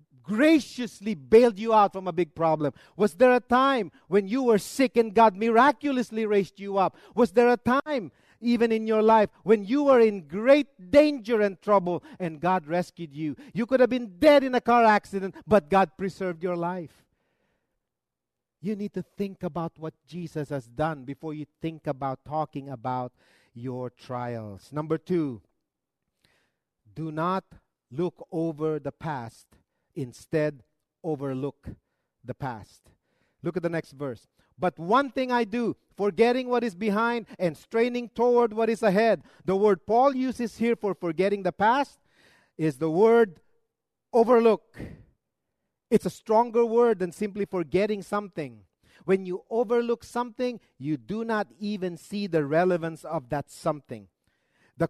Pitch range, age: 155-225 Hz, 40-59